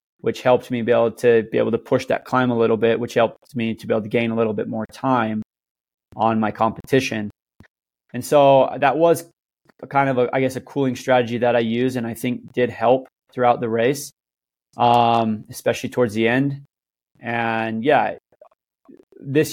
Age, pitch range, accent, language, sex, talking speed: 20-39, 115-125 Hz, American, English, male, 185 wpm